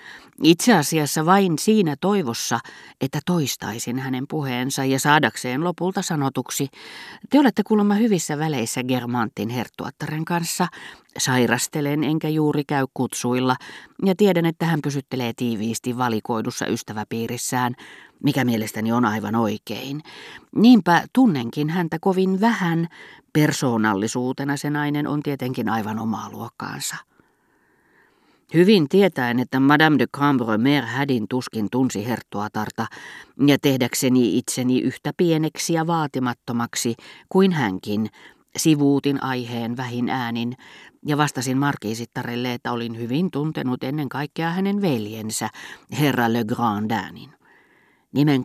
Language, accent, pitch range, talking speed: Finnish, native, 120-155 Hz, 110 wpm